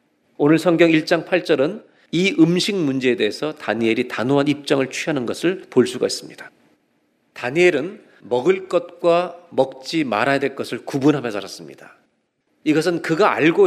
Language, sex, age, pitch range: Korean, male, 40-59, 125-175 Hz